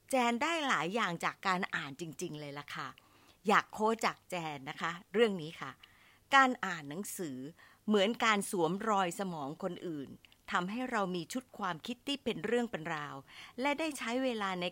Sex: female